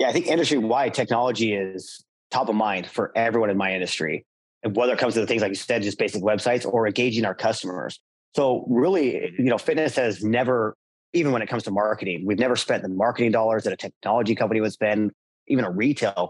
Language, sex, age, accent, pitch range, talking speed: English, male, 30-49, American, 105-120 Hz, 215 wpm